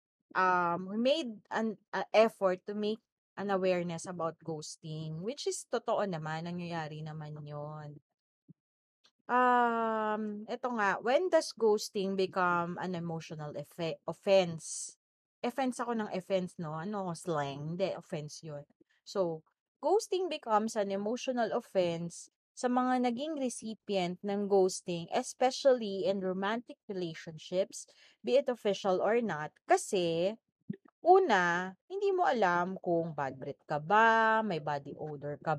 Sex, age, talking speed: female, 20-39, 125 wpm